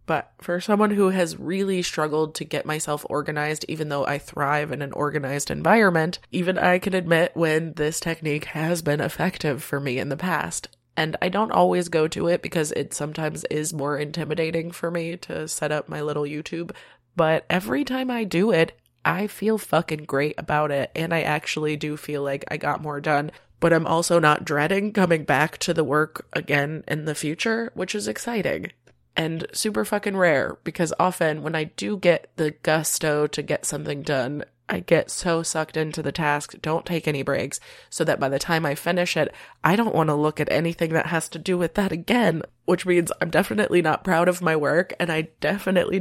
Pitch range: 150-175 Hz